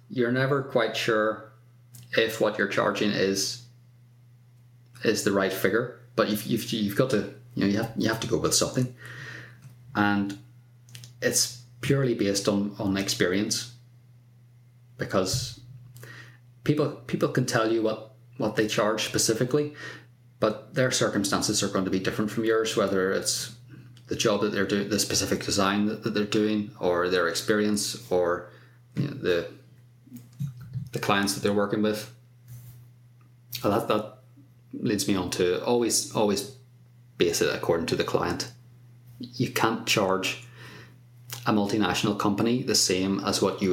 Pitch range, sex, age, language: 105-120 Hz, male, 30-49, English